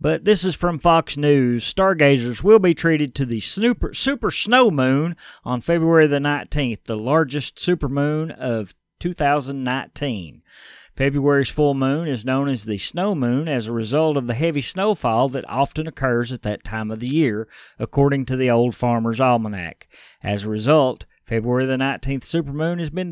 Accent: American